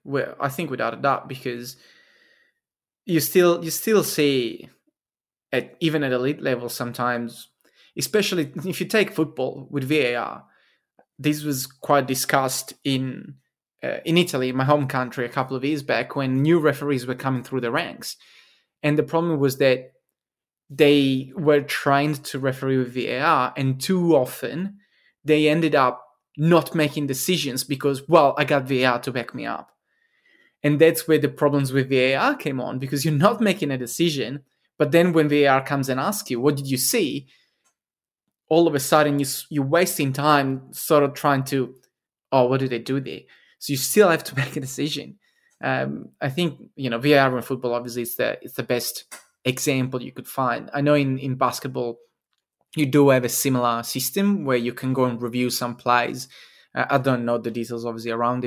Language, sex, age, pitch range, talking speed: English, male, 20-39, 130-150 Hz, 180 wpm